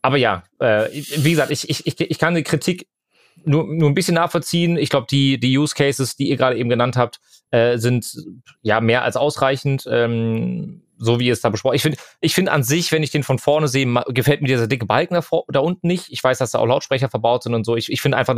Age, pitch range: 30-49, 115-150 Hz